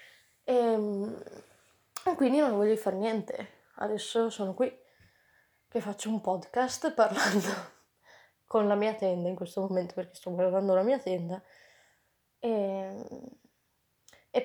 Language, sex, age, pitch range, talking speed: Italian, female, 20-39, 195-245 Hz, 120 wpm